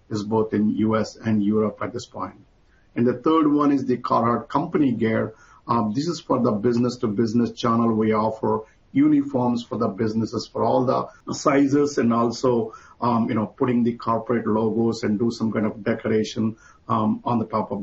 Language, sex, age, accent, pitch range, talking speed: English, male, 50-69, Indian, 110-125 Hz, 185 wpm